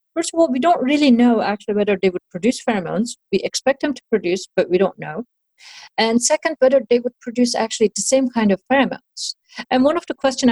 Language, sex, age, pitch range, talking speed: English, female, 40-59, 185-250 Hz, 220 wpm